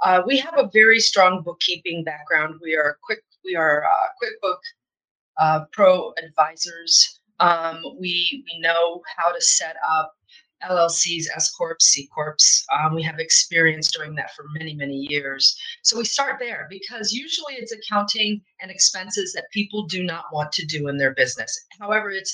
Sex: female